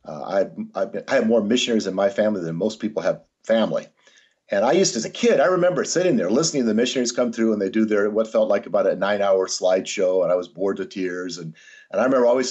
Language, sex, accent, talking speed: English, male, American, 270 wpm